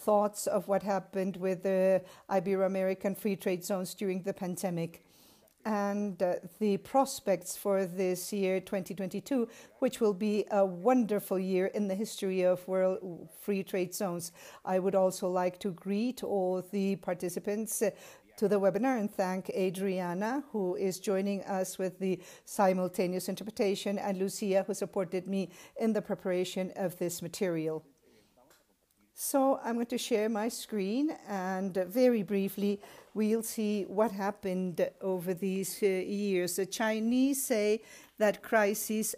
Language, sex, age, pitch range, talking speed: Spanish, female, 50-69, 185-215 Hz, 140 wpm